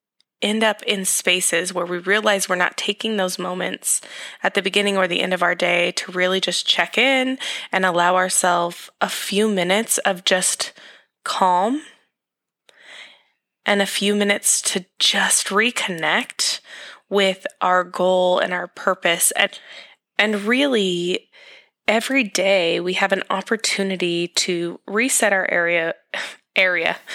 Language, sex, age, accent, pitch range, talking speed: English, female, 20-39, American, 180-215 Hz, 135 wpm